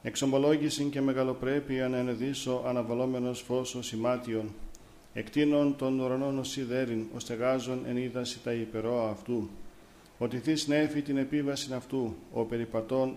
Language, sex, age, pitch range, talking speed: Greek, male, 50-69, 120-135 Hz, 115 wpm